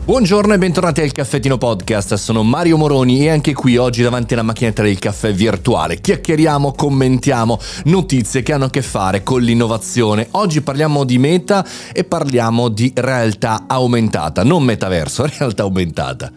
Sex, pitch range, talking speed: male, 105-140 Hz, 155 wpm